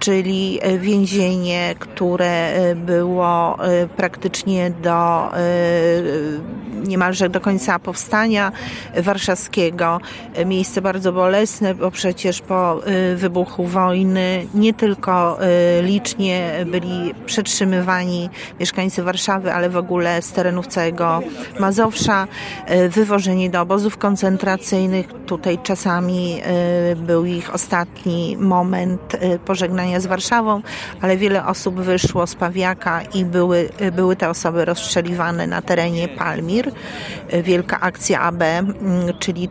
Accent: native